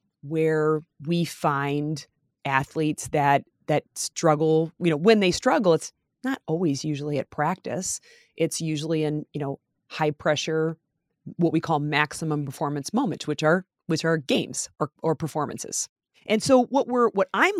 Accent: American